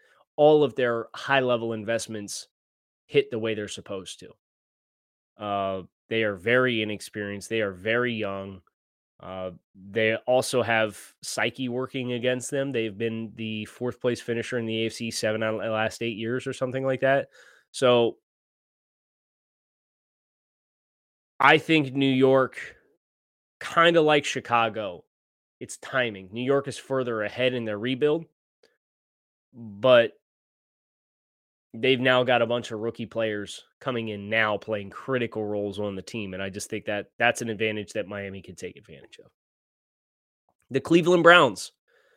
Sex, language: male, English